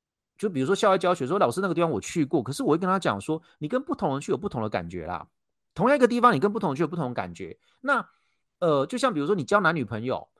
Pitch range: 135-215 Hz